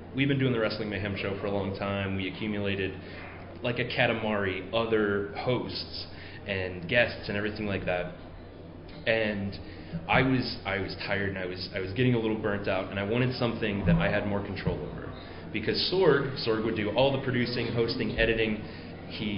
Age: 30-49